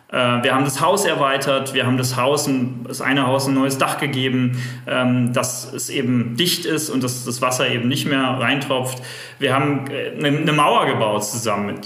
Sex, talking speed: male, 180 wpm